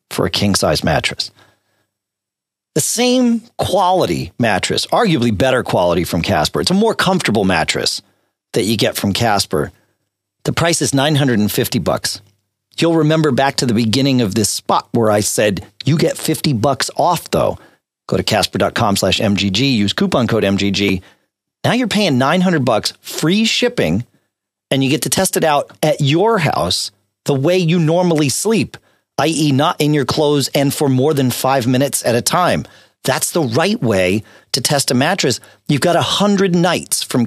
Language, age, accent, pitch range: English, 40-59, American, 105-165 Hz